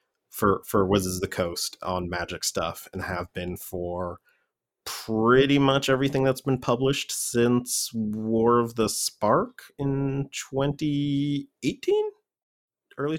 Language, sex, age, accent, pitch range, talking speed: English, male, 30-49, American, 90-110 Hz, 125 wpm